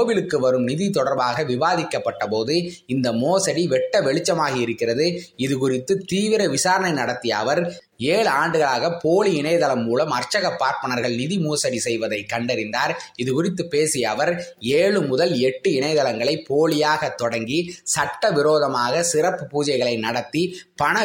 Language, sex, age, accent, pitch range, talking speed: Tamil, male, 20-39, native, 130-185 Hz, 115 wpm